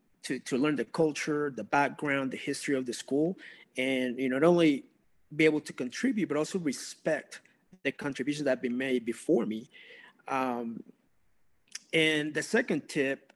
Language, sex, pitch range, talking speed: English, male, 125-150 Hz, 165 wpm